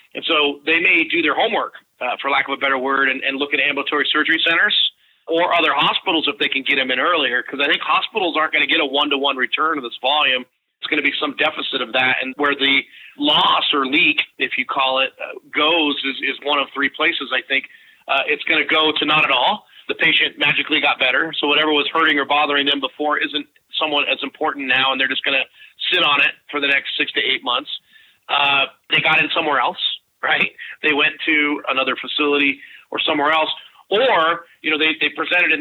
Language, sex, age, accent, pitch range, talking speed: English, male, 40-59, American, 135-160 Hz, 230 wpm